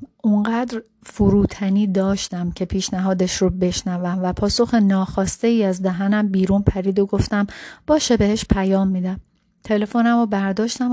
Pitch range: 185-225 Hz